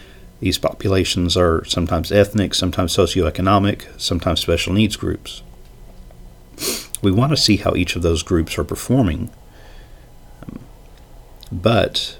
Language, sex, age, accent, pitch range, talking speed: English, male, 50-69, American, 85-105 Hz, 115 wpm